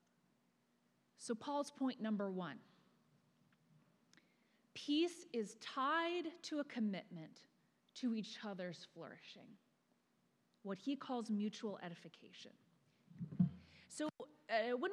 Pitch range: 195-275 Hz